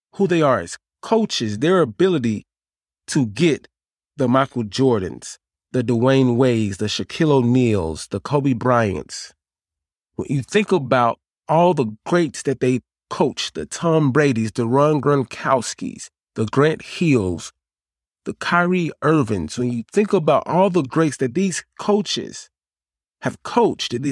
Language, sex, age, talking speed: English, male, 30-49, 135 wpm